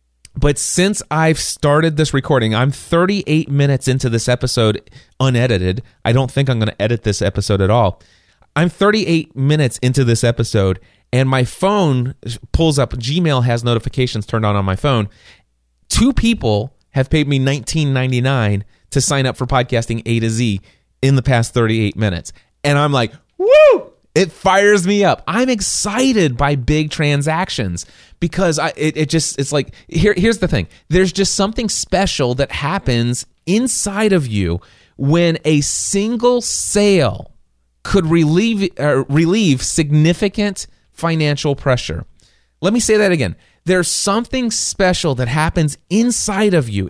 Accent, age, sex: American, 30-49, male